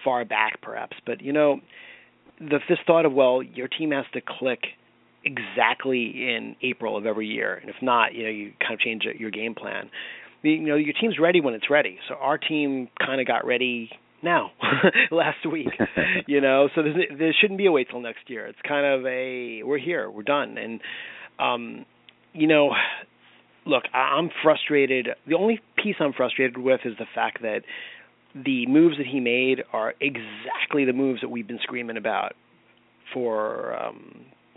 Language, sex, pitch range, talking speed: English, male, 120-145 Hz, 180 wpm